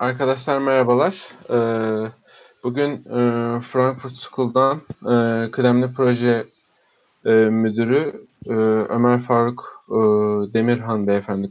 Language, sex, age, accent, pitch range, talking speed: Turkish, male, 40-59, native, 110-130 Hz, 65 wpm